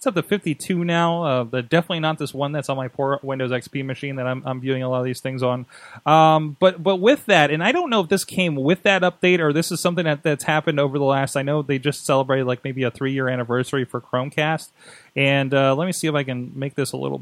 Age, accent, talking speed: 30-49, American, 270 wpm